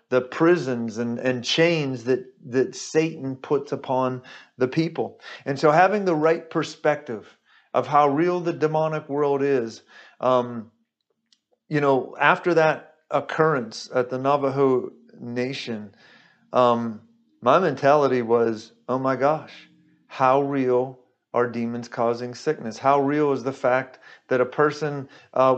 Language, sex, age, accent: English, male, 40-59, American